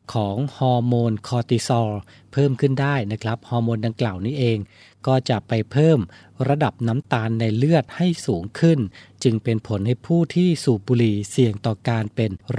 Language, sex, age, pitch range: Thai, male, 20-39, 105-125 Hz